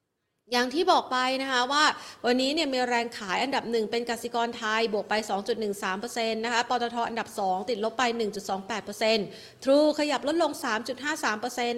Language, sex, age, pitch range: Thai, female, 30-49, 215-265 Hz